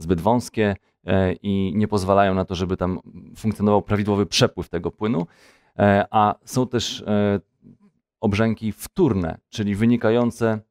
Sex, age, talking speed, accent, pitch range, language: male, 30-49, 120 wpm, native, 95-115 Hz, Polish